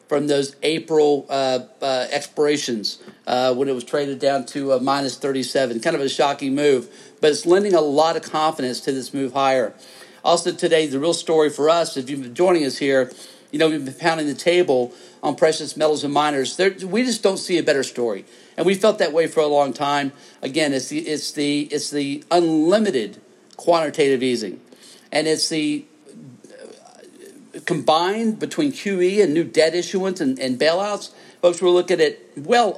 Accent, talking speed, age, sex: American, 185 wpm, 50-69, male